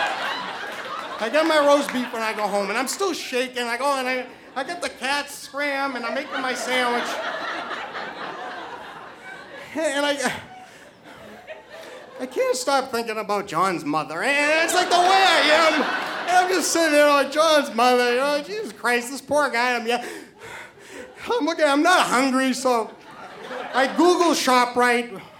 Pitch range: 225-300 Hz